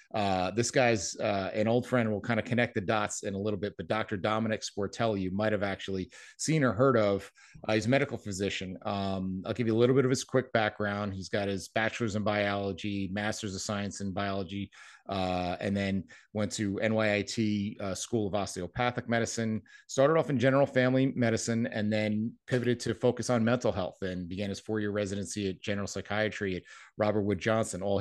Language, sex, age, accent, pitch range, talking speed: English, male, 30-49, American, 95-115 Hz, 200 wpm